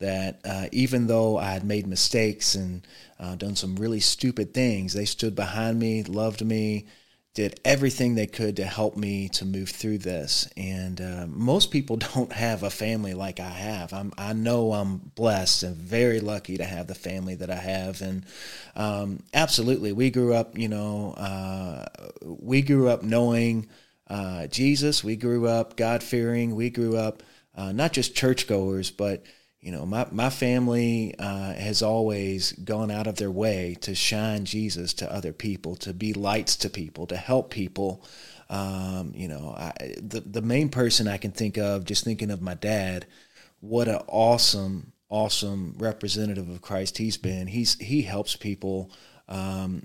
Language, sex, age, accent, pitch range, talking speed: English, male, 30-49, American, 95-115 Hz, 170 wpm